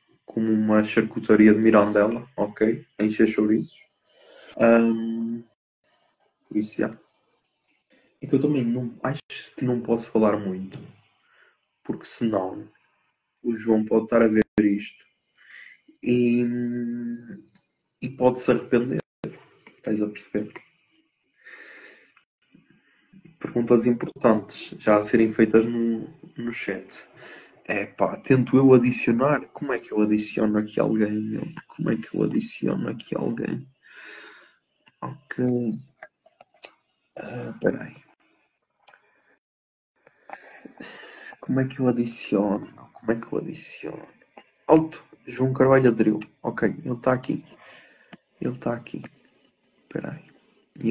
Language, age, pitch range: Portuguese, 20-39, 110-125 Hz